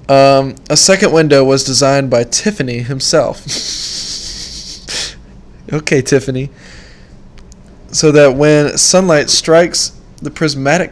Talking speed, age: 100 wpm, 20-39